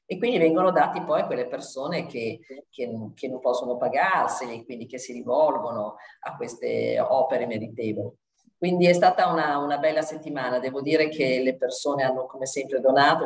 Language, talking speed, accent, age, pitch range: Italian, 170 wpm, native, 40-59, 125-150 Hz